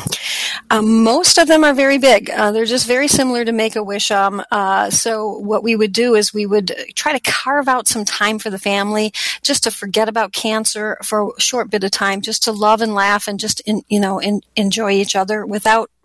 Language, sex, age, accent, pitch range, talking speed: English, female, 40-59, American, 195-230 Hz, 220 wpm